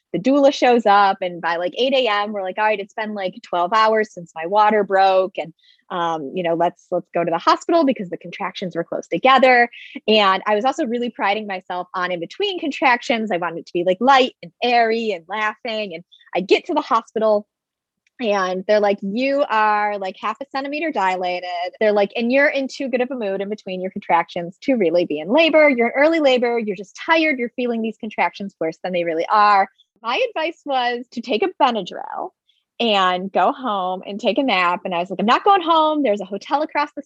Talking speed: 225 wpm